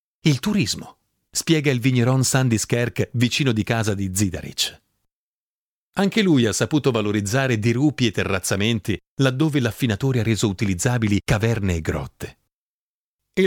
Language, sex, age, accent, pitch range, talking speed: Italian, male, 40-59, native, 110-165 Hz, 125 wpm